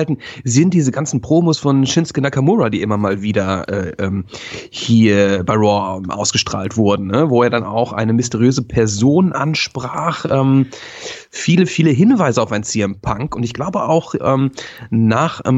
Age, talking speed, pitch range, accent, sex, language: 30-49, 155 wpm, 115-160 Hz, German, male, German